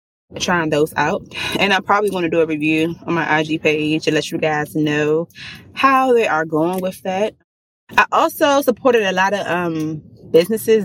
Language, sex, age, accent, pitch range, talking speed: English, female, 20-39, American, 160-210 Hz, 190 wpm